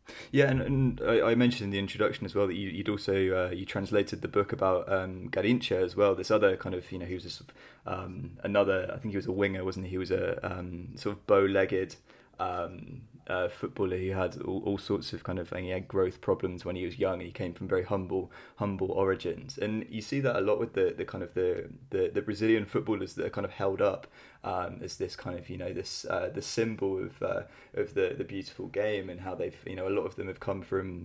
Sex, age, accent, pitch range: male, 20-39, British, 95-125 Hz